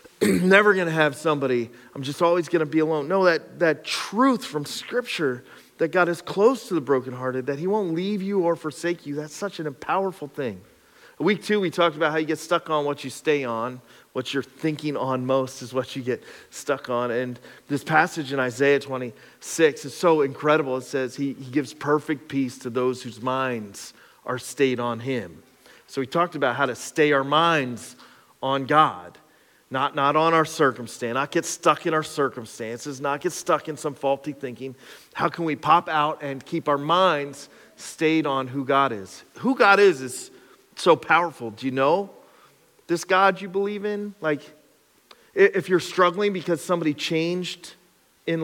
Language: English